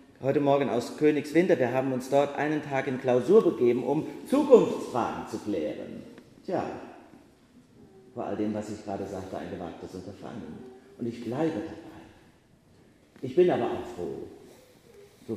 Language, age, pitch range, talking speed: German, 40-59, 100-165 Hz, 150 wpm